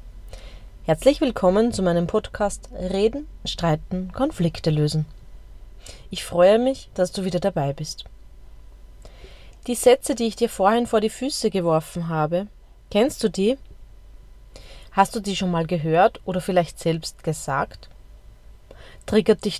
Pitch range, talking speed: 160-210 Hz, 130 wpm